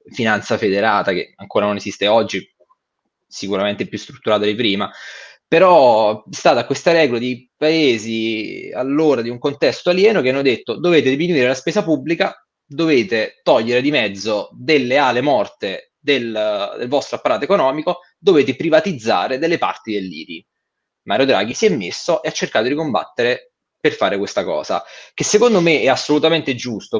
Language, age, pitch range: Italian, 20-39, 115-170 Hz